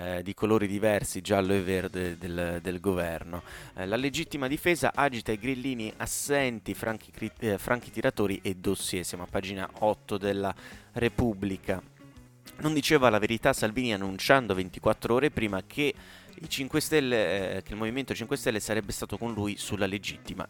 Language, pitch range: Italian, 95-120 Hz